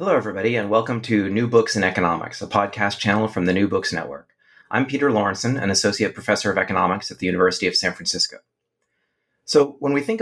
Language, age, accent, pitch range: English, 30-49, American, 90-115 Hz